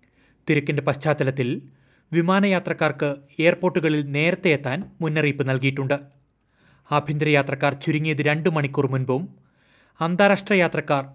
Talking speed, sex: 85 wpm, male